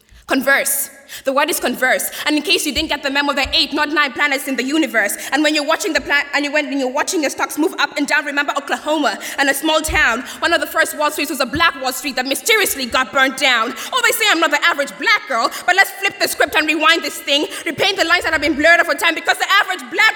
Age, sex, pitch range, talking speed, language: 20-39, female, 280-370 Hz, 285 wpm, English